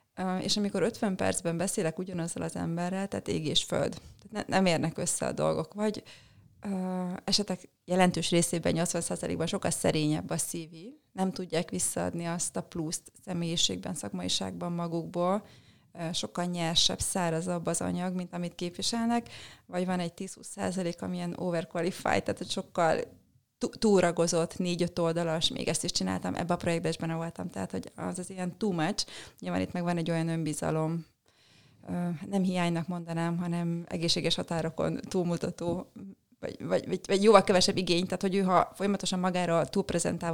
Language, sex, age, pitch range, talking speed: Hungarian, female, 30-49, 165-185 Hz, 155 wpm